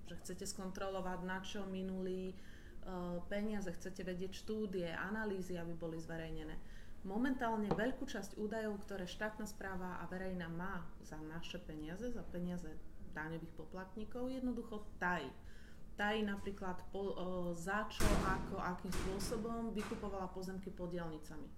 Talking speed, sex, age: 130 wpm, female, 30-49